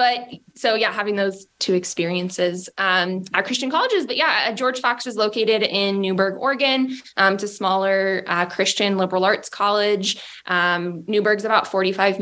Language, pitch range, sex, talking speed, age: English, 185-235 Hz, female, 160 wpm, 20-39